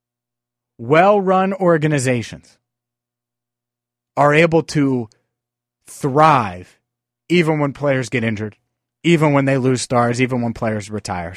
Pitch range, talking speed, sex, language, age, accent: 120-165 Hz, 105 wpm, male, English, 30-49, American